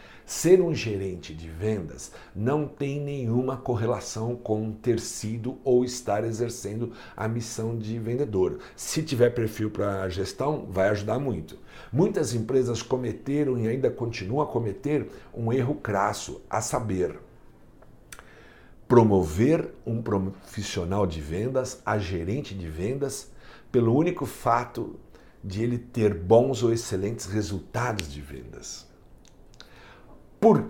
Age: 60-79